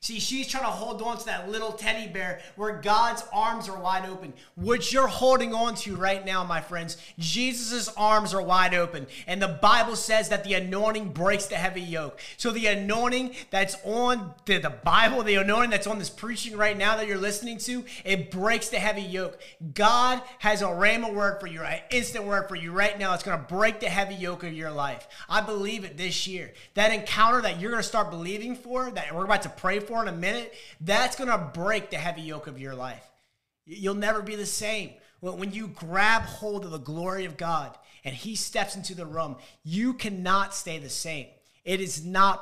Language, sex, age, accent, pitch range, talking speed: English, male, 30-49, American, 175-220 Hz, 220 wpm